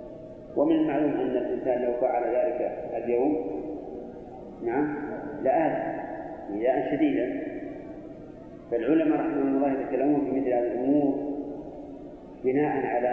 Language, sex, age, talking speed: Arabic, male, 40-59, 105 wpm